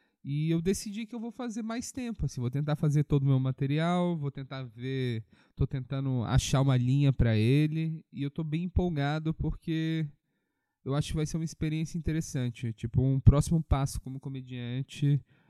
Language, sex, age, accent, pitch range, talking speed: Portuguese, male, 20-39, Brazilian, 125-150 Hz, 180 wpm